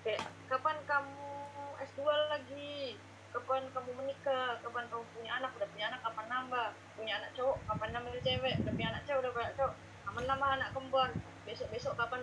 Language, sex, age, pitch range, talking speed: Indonesian, female, 20-39, 210-285 Hz, 180 wpm